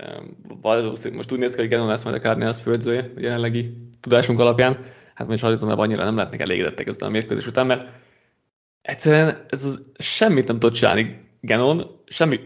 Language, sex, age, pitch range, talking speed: Hungarian, male, 20-39, 115-135 Hz, 175 wpm